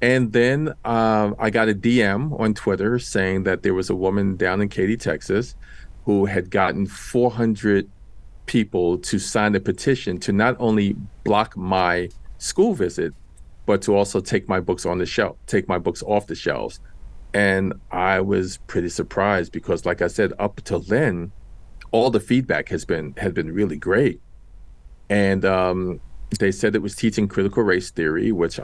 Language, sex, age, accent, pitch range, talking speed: English, male, 40-59, American, 90-110 Hz, 170 wpm